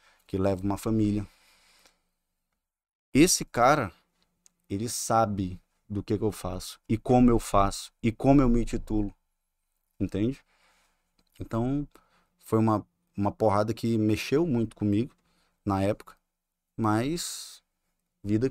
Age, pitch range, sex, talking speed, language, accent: 20-39, 105-155 Hz, male, 115 wpm, Portuguese, Brazilian